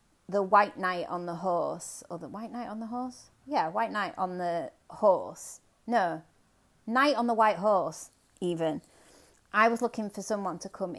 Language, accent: English, British